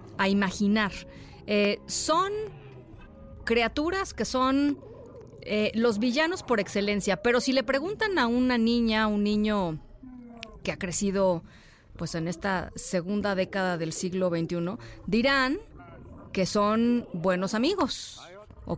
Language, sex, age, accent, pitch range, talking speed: Spanish, female, 30-49, Mexican, 185-255 Hz, 120 wpm